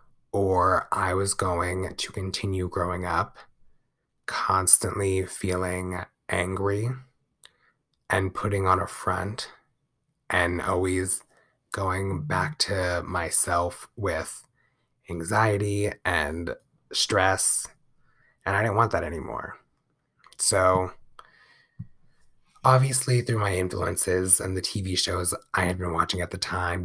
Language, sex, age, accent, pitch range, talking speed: English, male, 20-39, American, 95-120 Hz, 105 wpm